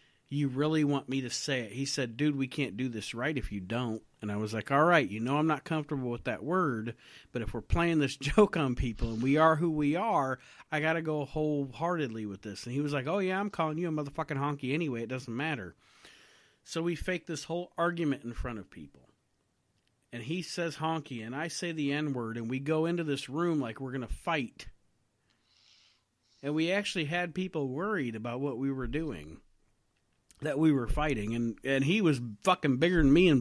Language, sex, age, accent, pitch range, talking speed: English, male, 40-59, American, 115-155 Hz, 220 wpm